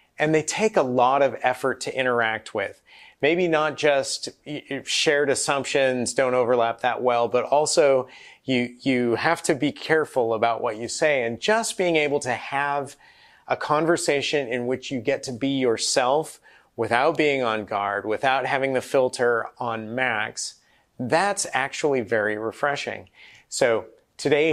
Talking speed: 150 wpm